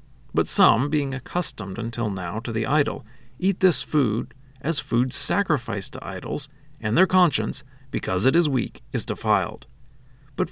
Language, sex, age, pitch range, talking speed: English, male, 40-59, 120-155 Hz, 155 wpm